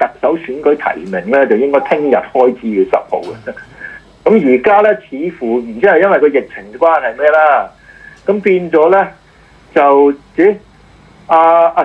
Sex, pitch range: male, 115-195 Hz